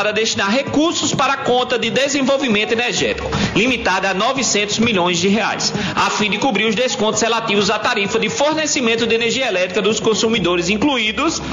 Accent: Brazilian